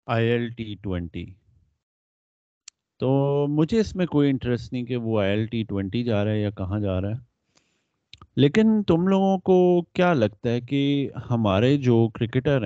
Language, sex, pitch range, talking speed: Urdu, male, 105-145 Hz, 155 wpm